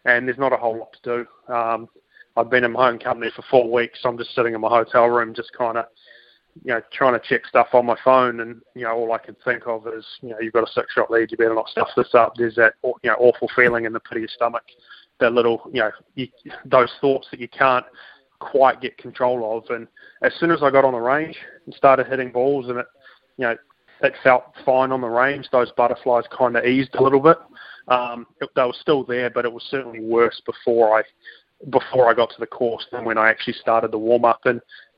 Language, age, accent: English, 20-39, Australian